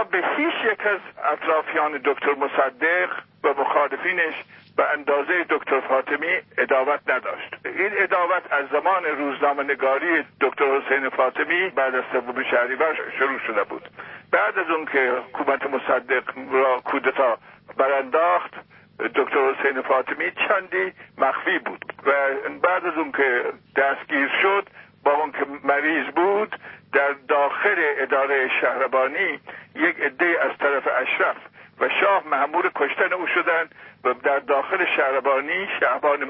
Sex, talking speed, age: male, 125 wpm, 60-79